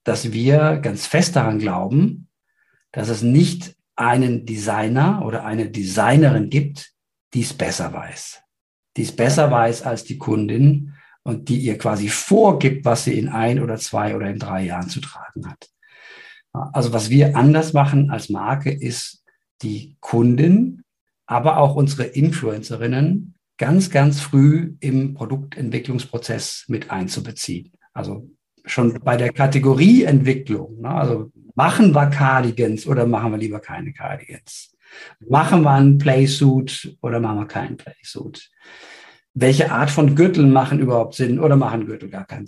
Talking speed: 145 wpm